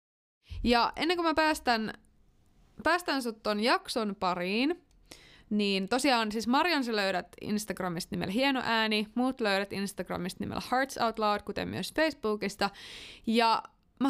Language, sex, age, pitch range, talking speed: Finnish, female, 20-39, 190-245 Hz, 130 wpm